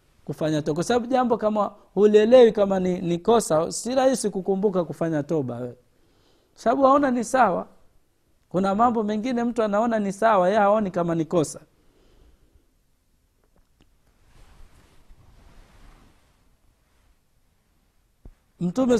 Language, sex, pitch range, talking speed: Swahili, male, 155-210 Hz, 105 wpm